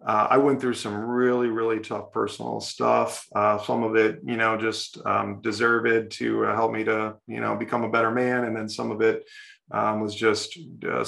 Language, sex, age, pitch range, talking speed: English, male, 30-49, 110-130 Hz, 210 wpm